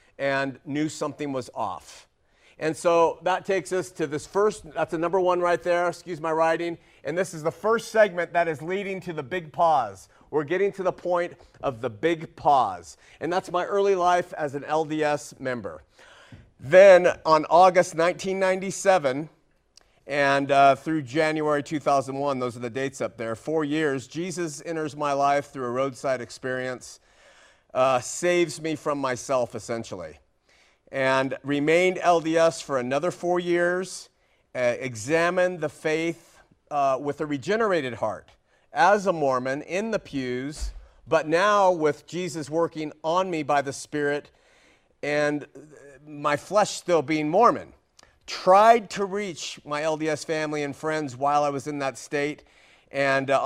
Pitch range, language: 140-175 Hz, English